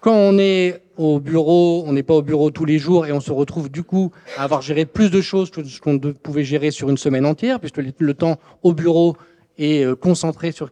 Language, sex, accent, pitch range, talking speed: French, male, French, 140-170 Hz, 235 wpm